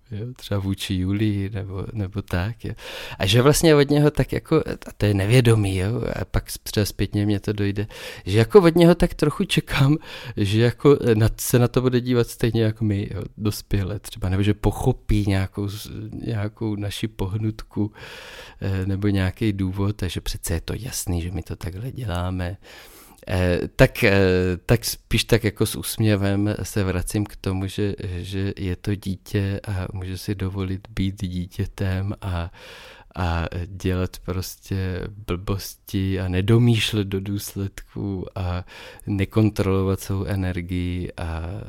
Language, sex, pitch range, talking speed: Czech, male, 95-110 Hz, 150 wpm